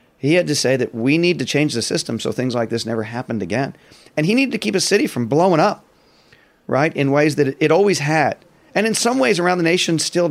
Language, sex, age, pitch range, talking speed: English, male, 40-59, 120-165 Hz, 250 wpm